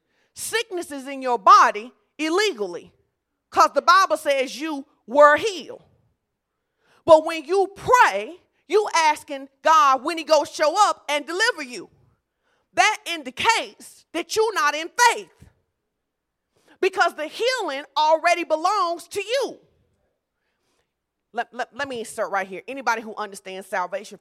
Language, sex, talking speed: English, female, 130 wpm